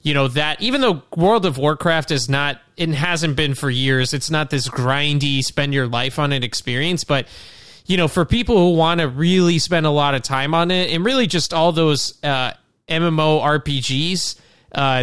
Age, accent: 20-39, American